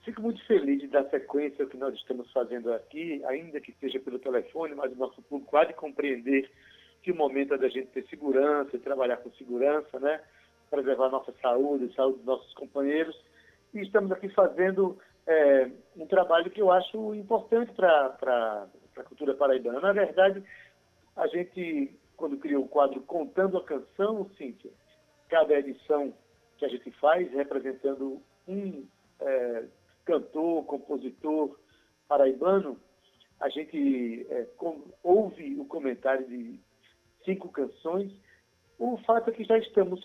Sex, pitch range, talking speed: male, 135-200 Hz, 145 wpm